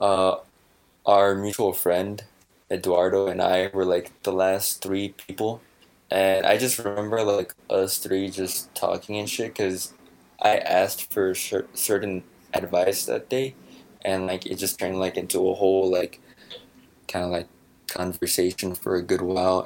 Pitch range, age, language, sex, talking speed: 90-100 Hz, 20-39, English, male, 155 wpm